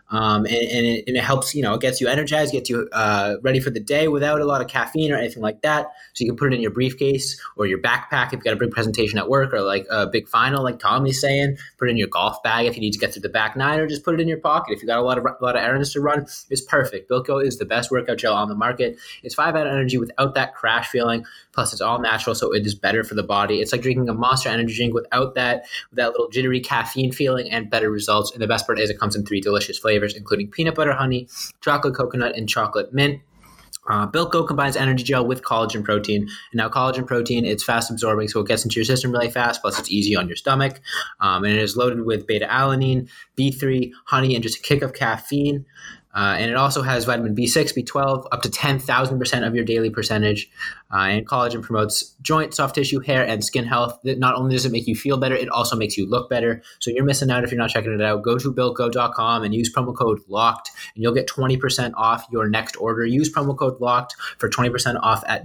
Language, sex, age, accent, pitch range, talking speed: English, male, 20-39, American, 115-135 Hz, 255 wpm